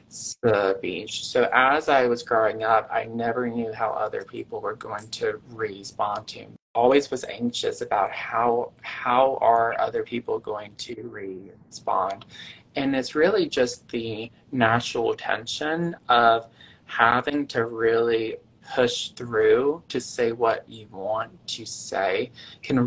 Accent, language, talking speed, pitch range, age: American, English, 140 wpm, 115-170 Hz, 20-39